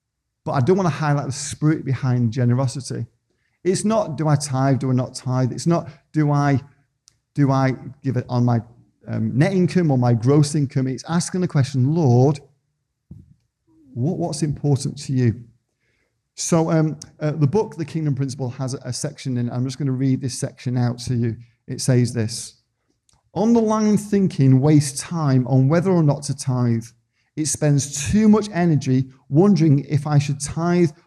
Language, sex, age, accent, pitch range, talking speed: English, male, 50-69, British, 130-160 Hz, 180 wpm